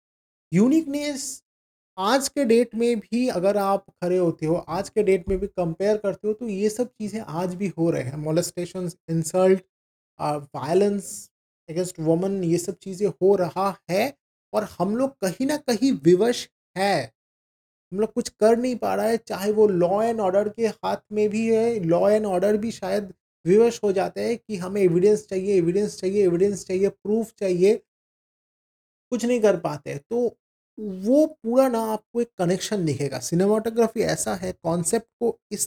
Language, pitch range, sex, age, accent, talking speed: Hindi, 185-230 Hz, male, 30-49, native, 170 wpm